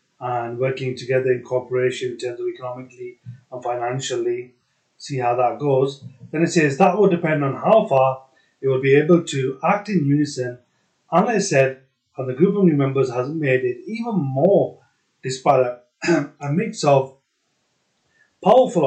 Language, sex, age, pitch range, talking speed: English, male, 30-49, 125-160 Hz, 170 wpm